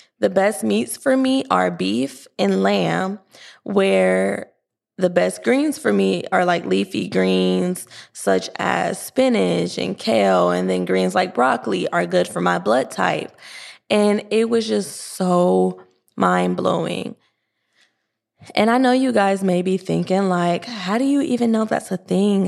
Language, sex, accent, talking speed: English, female, American, 155 wpm